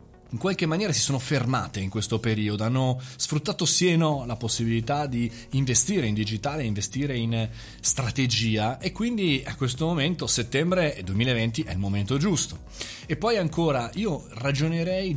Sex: male